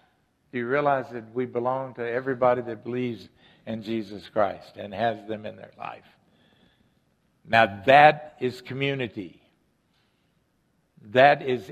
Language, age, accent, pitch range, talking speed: English, 60-79, American, 120-150 Hz, 130 wpm